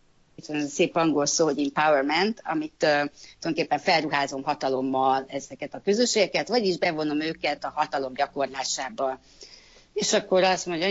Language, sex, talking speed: Hungarian, female, 145 wpm